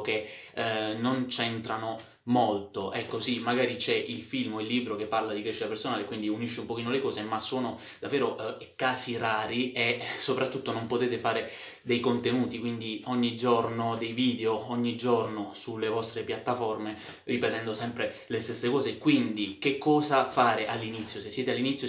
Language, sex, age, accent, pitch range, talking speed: Italian, male, 20-39, native, 115-130 Hz, 170 wpm